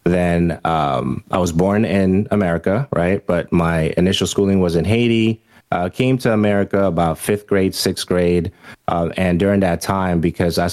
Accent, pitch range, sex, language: American, 90-110 Hz, male, English